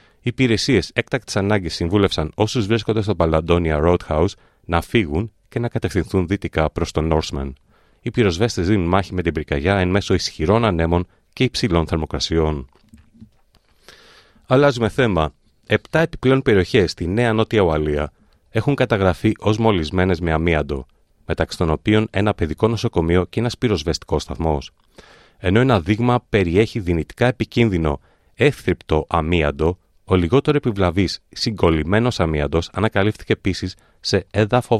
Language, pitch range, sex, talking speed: Greek, 80-110 Hz, male, 130 wpm